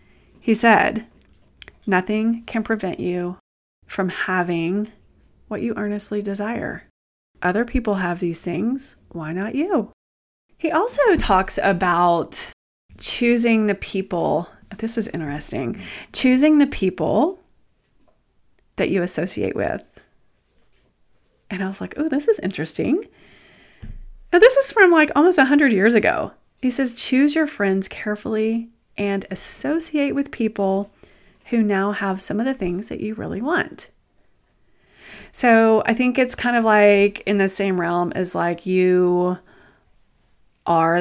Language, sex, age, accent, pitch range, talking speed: English, female, 30-49, American, 180-235 Hz, 130 wpm